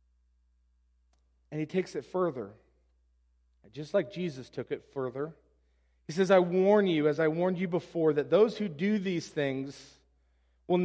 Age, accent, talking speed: 40-59, American, 155 wpm